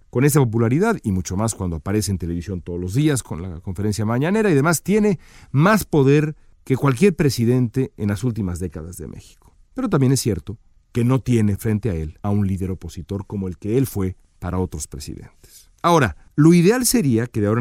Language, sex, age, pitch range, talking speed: Spanish, male, 40-59, 95-135 Hz, 205 wpm